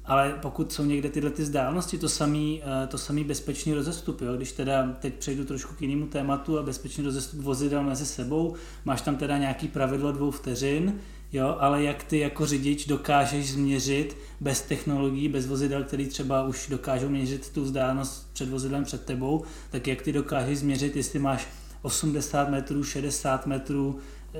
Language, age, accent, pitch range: Czech, 20-39, native, 135-155 Hz